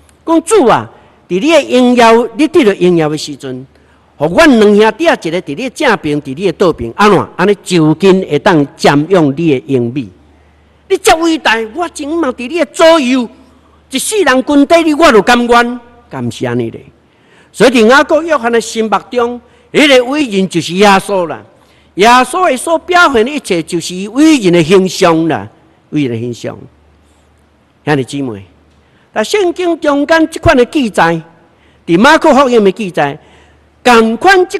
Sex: male